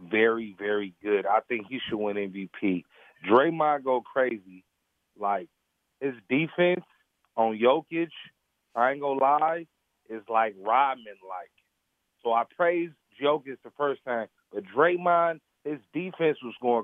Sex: male